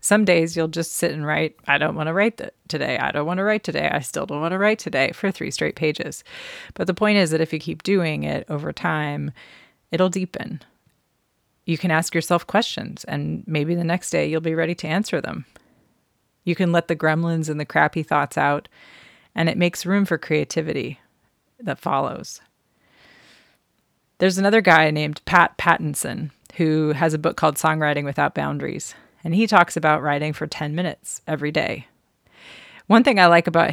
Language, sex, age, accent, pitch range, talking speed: English, female, 30-49, American, 155-180 Hz, 190 wpm